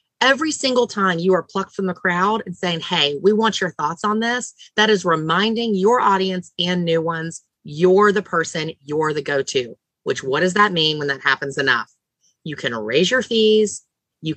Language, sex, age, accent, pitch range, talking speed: English, female, 30-49, American, 145-210 Hz, 200 wpm